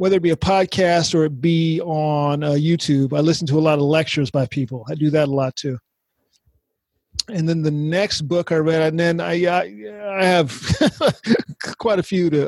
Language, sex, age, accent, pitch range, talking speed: English, male, 40-59, American, 145-170 Hz, 200 wpm